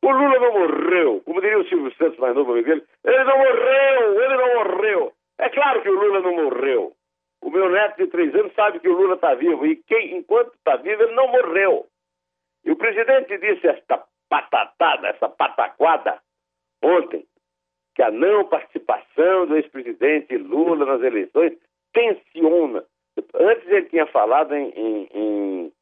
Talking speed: 165 wpm